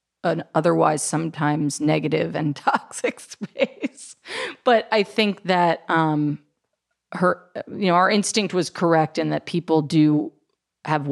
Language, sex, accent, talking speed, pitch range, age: English, female, American, 130 wpm, 150-175 Hz, 30-49